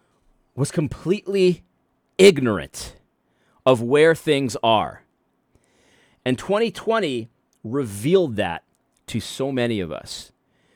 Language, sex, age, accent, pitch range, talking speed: English, male, 30-49, American, 120-185 Hz, 90 wpm